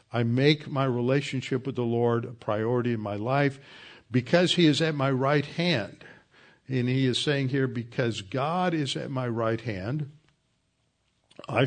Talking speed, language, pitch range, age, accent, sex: 165 wpm, English, 115-140 Hz, 60-79, American, male